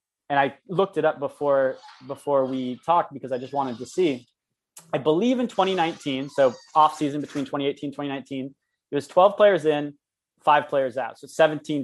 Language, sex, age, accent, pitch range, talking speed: English, male, 20-39, American, 135-170 Hz, 170 wpm